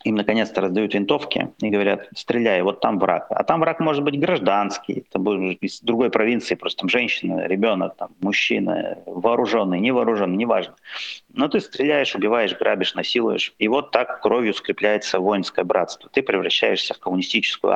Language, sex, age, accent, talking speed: Russian, male, 30-49, native, 160 wpm